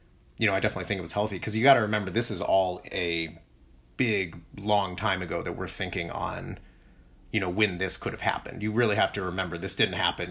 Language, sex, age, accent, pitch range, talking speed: English, male, 30-49, American, 90-110 Hz, 235 wpm